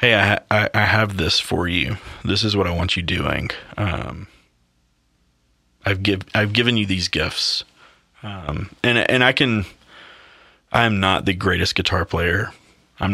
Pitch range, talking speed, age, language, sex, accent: 90-105 Hz, 165 wpm, 30-49, English, male, American